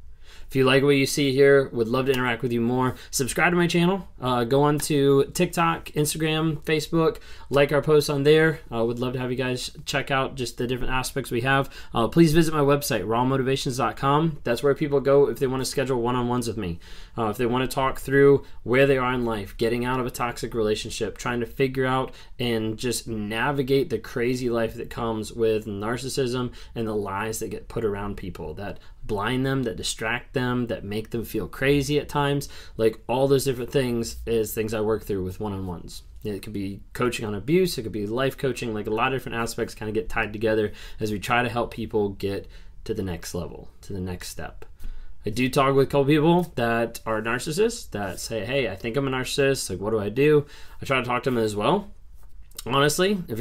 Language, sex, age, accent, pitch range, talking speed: English, male, 20-39, American, 110-140 Hz, 225 wpm